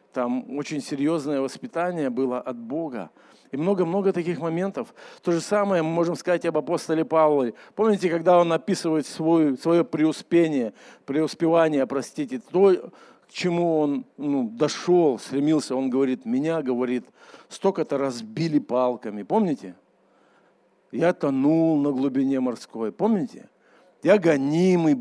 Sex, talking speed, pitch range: male, 125 wpm, 145-195 Hz